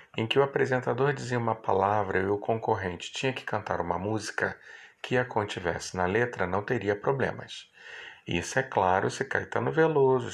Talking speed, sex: 175 wpm, male